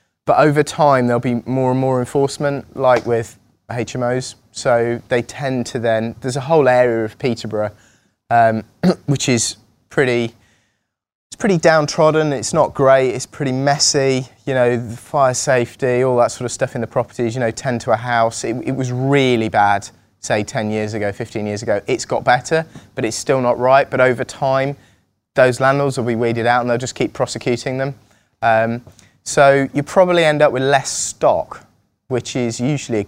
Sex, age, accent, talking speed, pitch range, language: male, 20-39, British, 185 wpm, 110-130 Hz, English